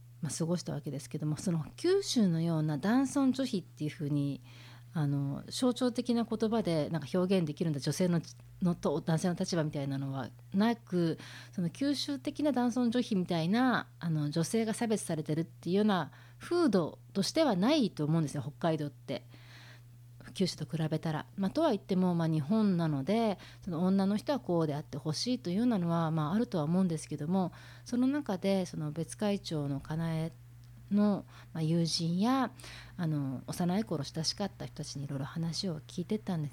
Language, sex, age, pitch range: Japanese, female, 40-59, 140-200 Hz